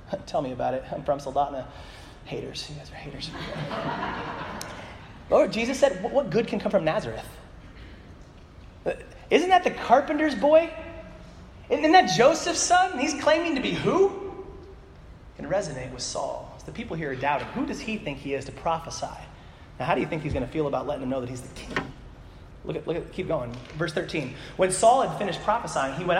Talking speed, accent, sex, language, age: 195 wpm, American, male, English, 30-49